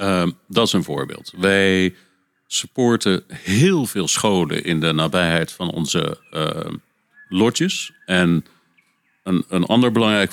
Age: 50-69